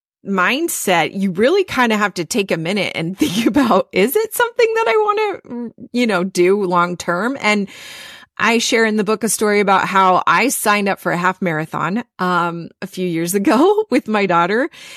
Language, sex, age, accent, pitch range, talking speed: English, female, 30-49, American, 180-240 Hz, 200 wpm